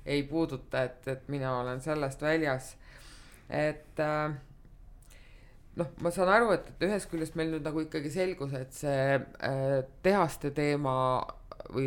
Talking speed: 125 wpm